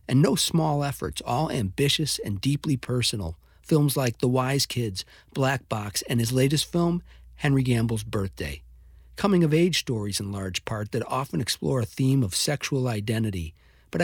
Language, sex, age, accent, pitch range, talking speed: English, male, 50-69, American, 95-135 Hz, 160 wpm